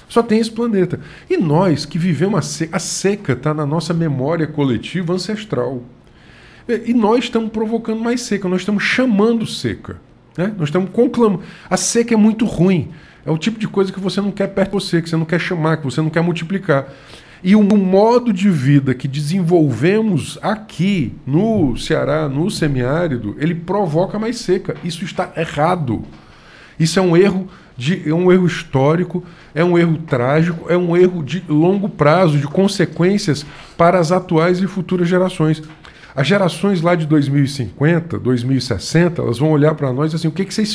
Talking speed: 180 wpm